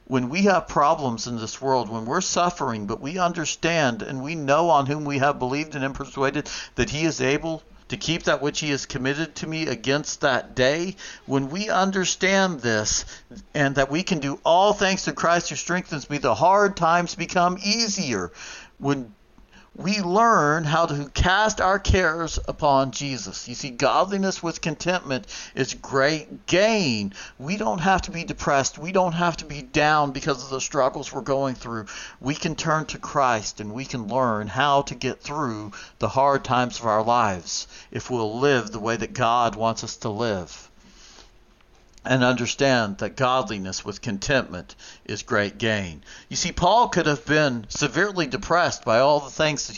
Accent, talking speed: American, 180 wpm